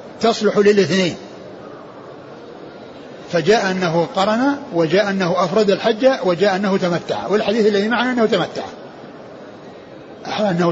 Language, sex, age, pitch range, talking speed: Arabic, male, 60-79, 190-235 Hz, 100 wpm